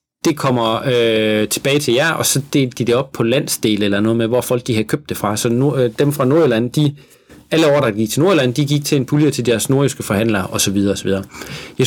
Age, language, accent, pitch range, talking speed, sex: 30-49, Danish, native, 115-145 Hz, 245 wpm, male